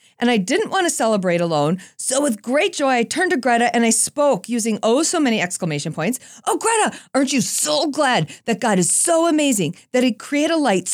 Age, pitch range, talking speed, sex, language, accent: 40-59, 170-245 Hz, 220 wpm, female, English, American